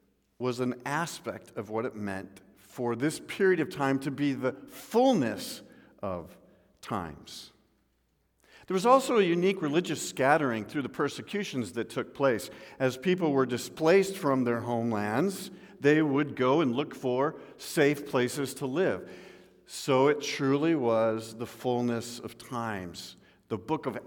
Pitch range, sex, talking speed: 110-145 Hz, male, 145 wpm